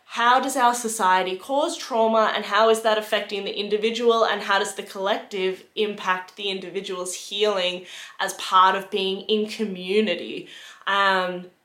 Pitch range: 185-225 Hz